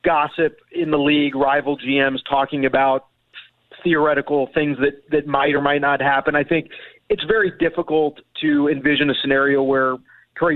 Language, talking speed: English, 160 wpm